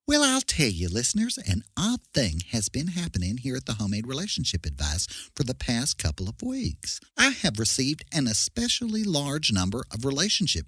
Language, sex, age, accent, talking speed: English, male, 50-69, American, 180 wpm